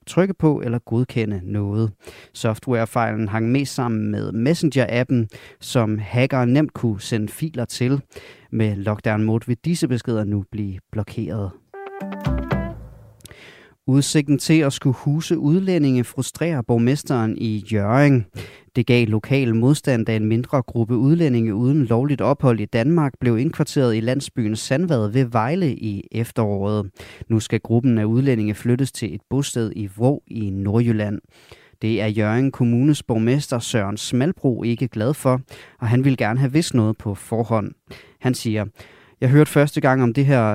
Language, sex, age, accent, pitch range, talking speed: Danish, male, 30-49, native, 110-135 Hz, 150 wpm